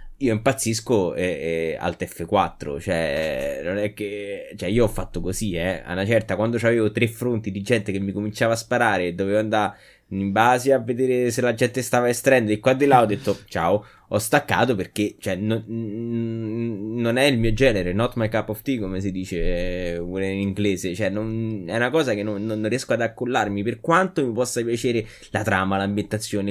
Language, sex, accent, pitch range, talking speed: Italian, male, native, 100-125 Hz, 200 wpm